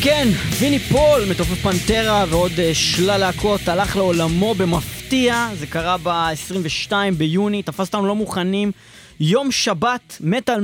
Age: 20-39